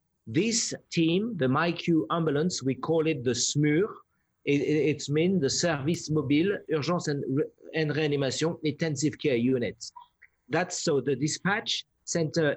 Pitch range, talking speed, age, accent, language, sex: 135-165 Hz, 135 wpm, 50-69, French, English, male